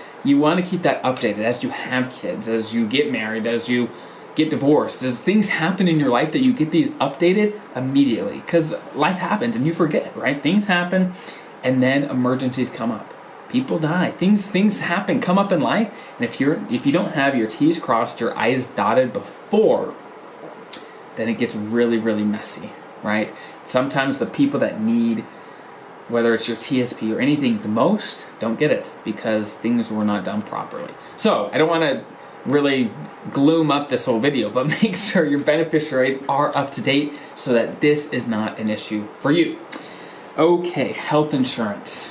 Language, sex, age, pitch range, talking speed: English, male, 20-39, 115-170 Hz, 180 wpm